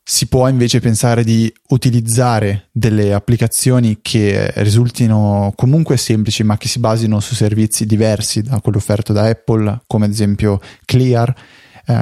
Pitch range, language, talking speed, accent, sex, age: 110-120 Hz, Italian, 140 wpm, native, male, 20-39